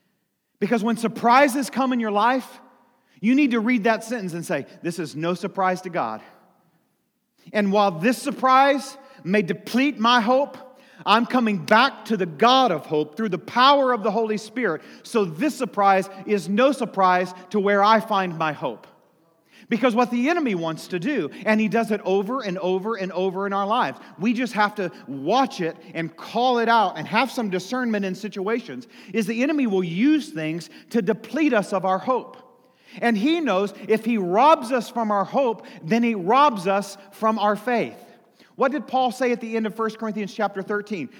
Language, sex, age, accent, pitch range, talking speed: English, male, 40-59, American, 195-255 Hz, 190 wpm